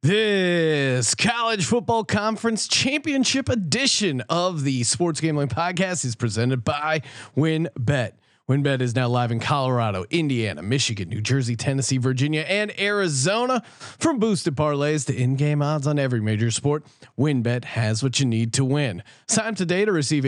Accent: American